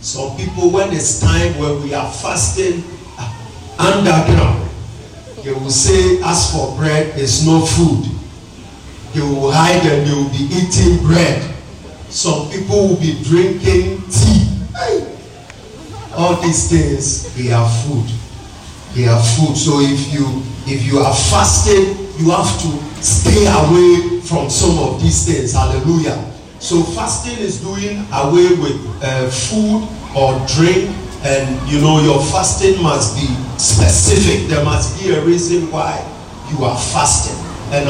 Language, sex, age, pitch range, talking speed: English, male, 40-59, 110-165 Hz, 140 wpm